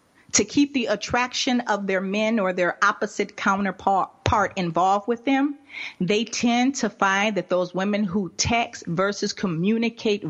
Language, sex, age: English, female, 40-59